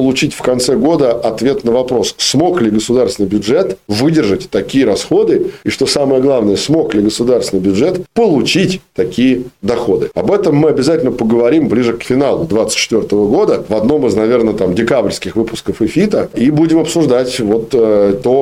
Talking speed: 155 wpm